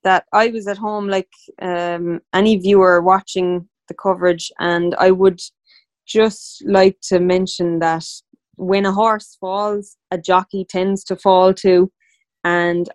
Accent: Irish